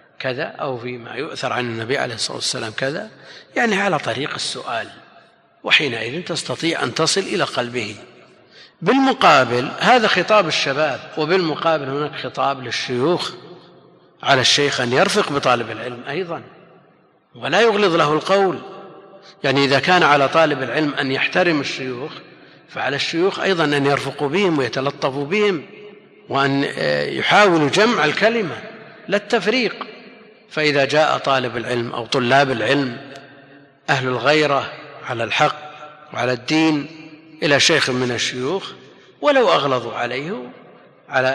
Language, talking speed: Arabic, 120 wpm